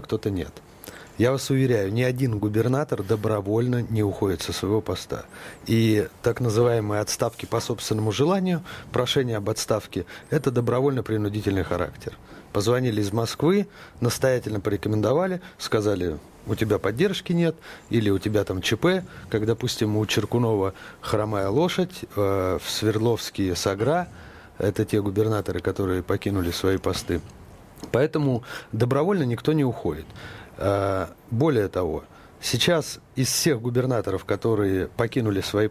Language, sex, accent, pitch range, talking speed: Russian, male, native, 105-135 Hz, 125 wpm